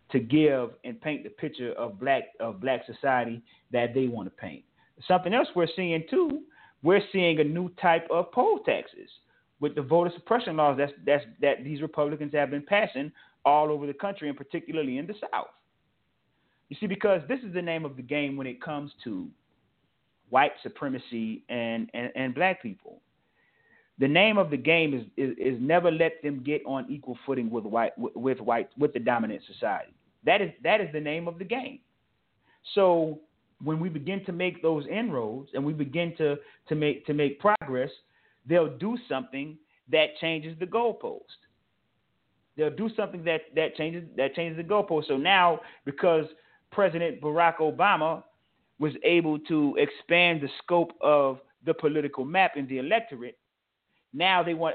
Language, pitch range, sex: English, 140-175 Hz, male